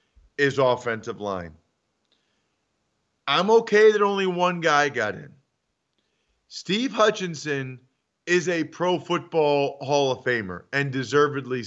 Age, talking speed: 40-59, 115 wpm